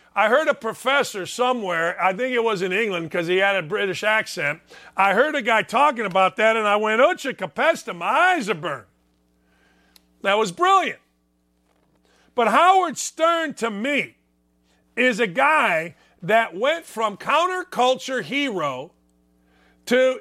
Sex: male